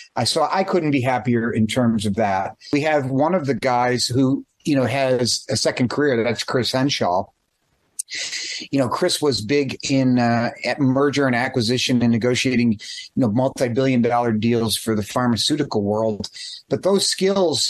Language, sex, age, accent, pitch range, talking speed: English, male, 30-49, American, 120-145 Hz, 180 wpm